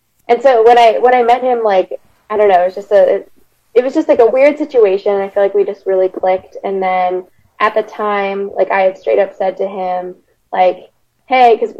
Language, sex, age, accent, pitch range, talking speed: English, female, 10-29, American, 190-225 Hz, 245 wpm